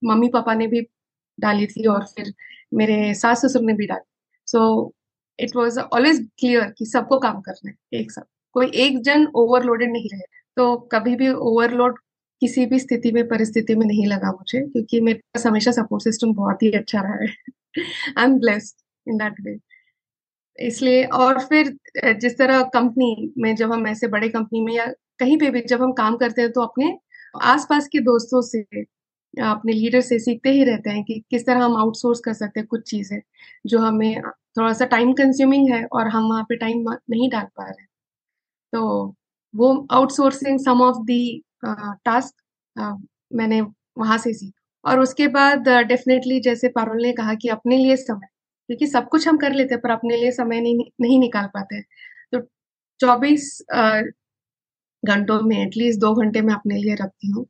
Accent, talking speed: native, 180 wpm